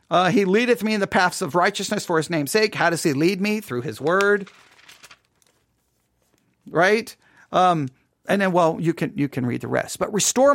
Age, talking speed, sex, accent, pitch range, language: 40-59, 200 wpm, male, American, 155-220 Hz, English